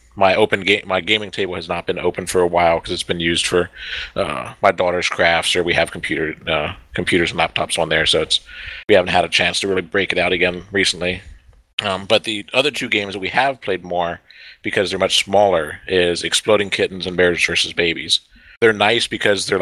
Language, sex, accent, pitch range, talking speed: English, male, American, 85-100 Hz, 220 wpm